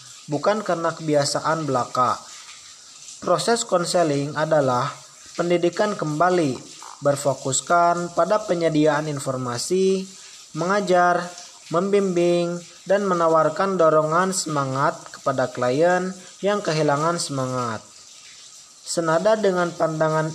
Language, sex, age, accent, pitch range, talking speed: Indonesian, male, 20-39, native, 145-180 Hz, 80 wpm